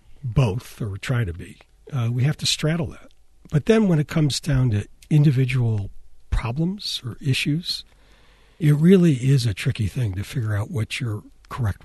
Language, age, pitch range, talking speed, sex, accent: English, 60-79, 105-135 Hz, 170 wpm, male, American